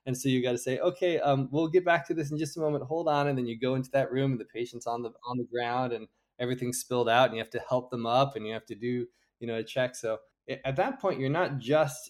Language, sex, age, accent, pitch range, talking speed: English, male, 20-39, American, 110-135 Hz, 300 wpm